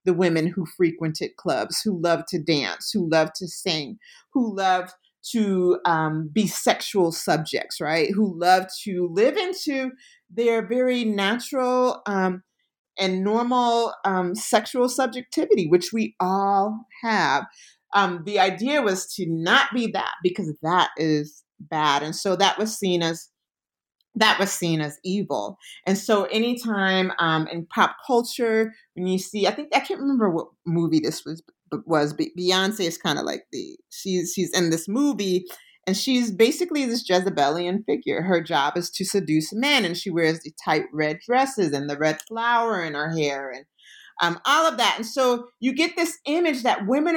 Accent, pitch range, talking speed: American, 175-240 Hz, 170 wpm